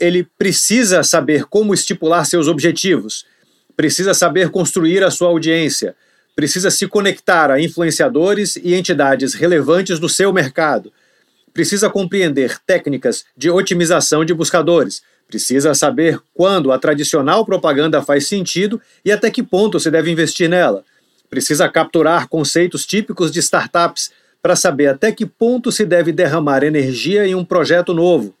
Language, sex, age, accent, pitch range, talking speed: Portuguese, male, 50-69, Brazilian, 155-195 Hz, 140 wpm